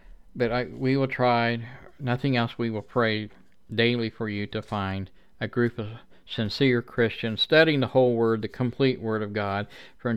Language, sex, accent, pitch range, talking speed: English, male, American, 105-125 Hz, 175 wpm